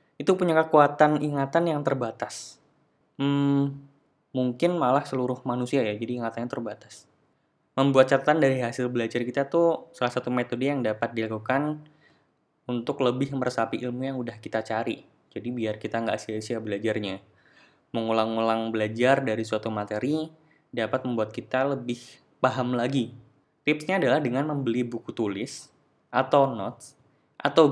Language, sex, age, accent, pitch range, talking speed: Indonesian, male, 10-29, native, 115-140 Hz, 135 wpm